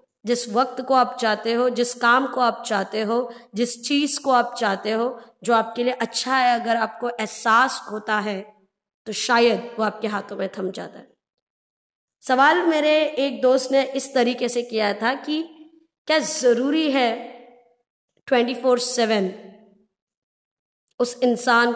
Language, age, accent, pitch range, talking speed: Hindi, 20-39, native, 215-245 Hz, 150 wpm